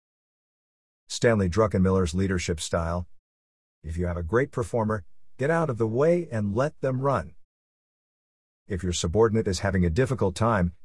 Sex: male